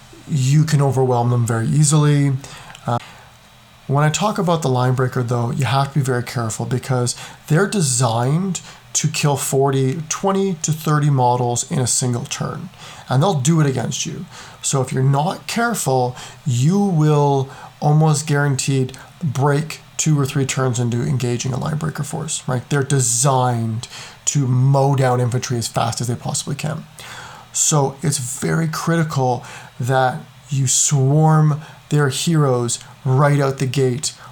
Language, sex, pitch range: English, male, 130-150 Hz